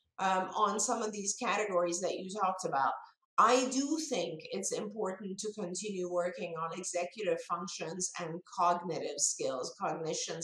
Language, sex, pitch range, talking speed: English, female, 175-220 Hz, 145 wpm